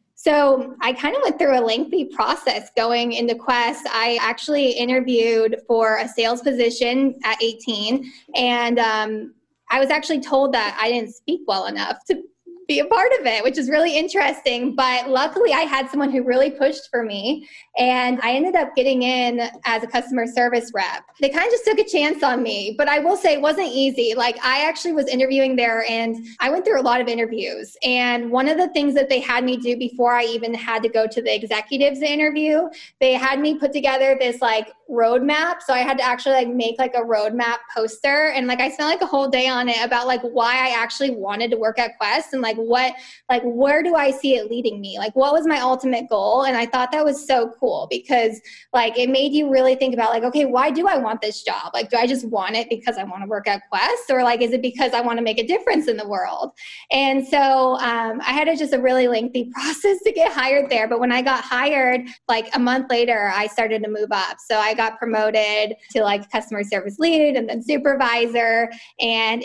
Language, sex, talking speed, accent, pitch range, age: English, female, 225 wpm, American, 230-280 Hz, 10-29